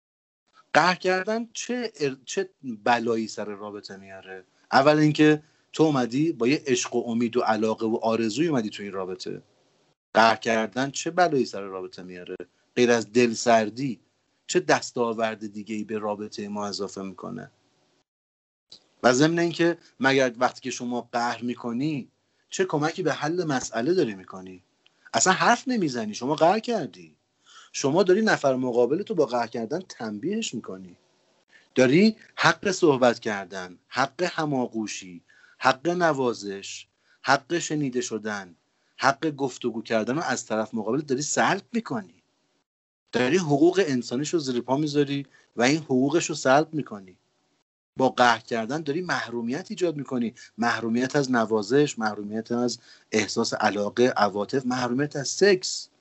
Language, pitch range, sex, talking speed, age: Persian, 110-155 Hz, male, 135 wpm, 40-59